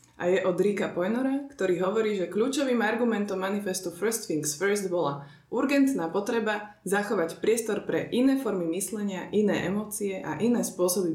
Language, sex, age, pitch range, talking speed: Slovak, female, 20-39, 185-220 Hz, 150 wpm